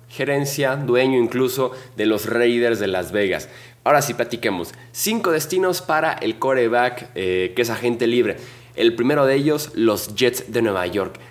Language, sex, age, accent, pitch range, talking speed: Spanish, male, 20-39, Mexican, 110-130 Hz, 165 wpm